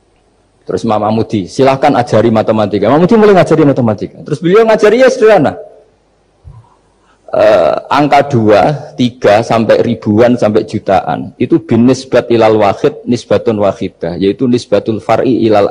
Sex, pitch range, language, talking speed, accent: male, 115-180 Hz, Indonesian, 125 wpm, native